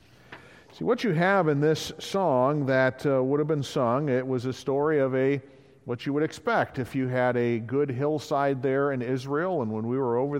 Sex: male